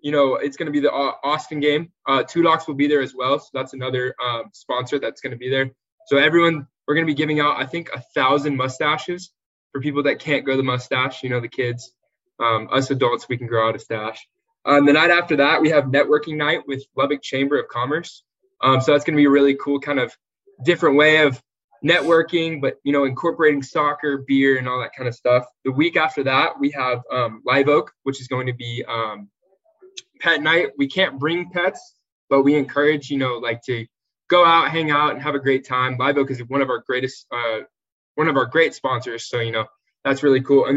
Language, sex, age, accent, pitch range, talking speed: English, male, 20-39, American, 130-155 Hz, 235 wpm